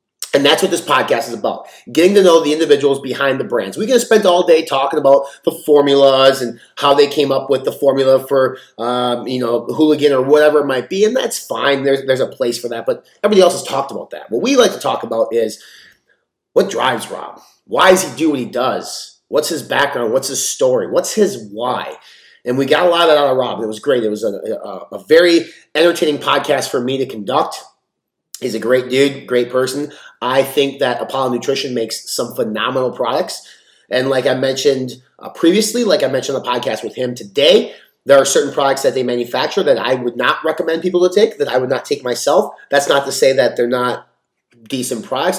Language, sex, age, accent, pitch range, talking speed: English, male, 30-49, American, 130-170 Hz, 220 wpm